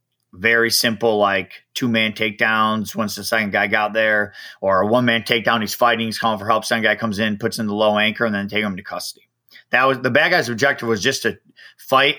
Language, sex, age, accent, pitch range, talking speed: English, male, 30-49, American, 110-130 Hz, 225 wpm